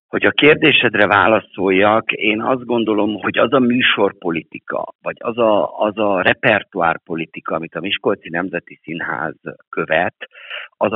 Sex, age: male, 60-79